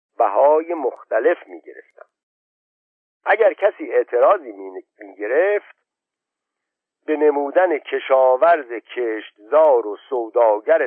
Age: 50-69